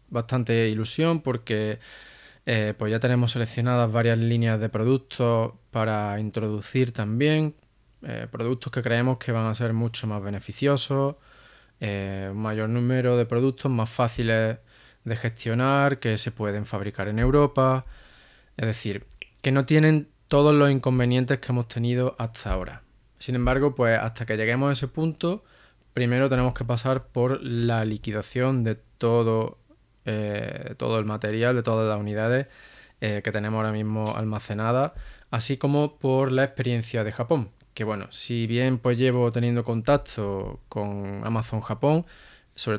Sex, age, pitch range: male, 20-39, 110-130 Hz